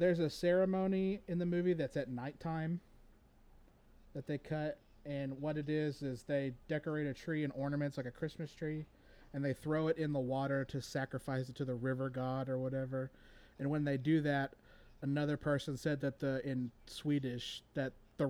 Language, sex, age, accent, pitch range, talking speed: English, male, 30-49, American, 130-155 Hz, 185 wpm